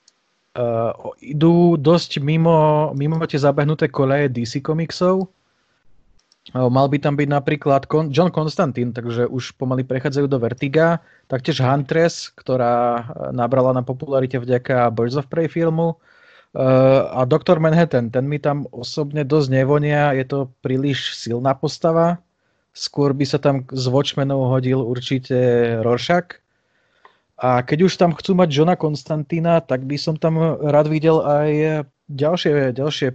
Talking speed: 140 wpm